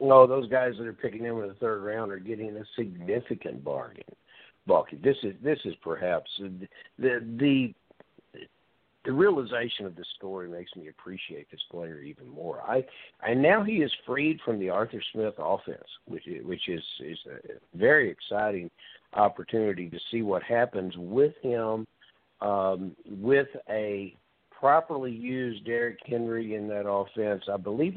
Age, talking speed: 60-79, 160 wpm